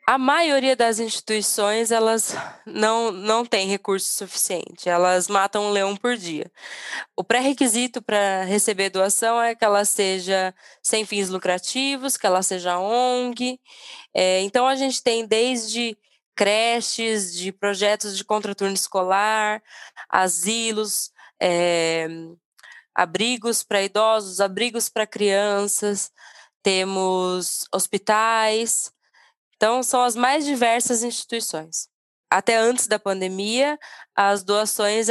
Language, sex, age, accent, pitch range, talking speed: Portuguese, female, 10-29, Brazilian, 200-240 Hz, 115 wpm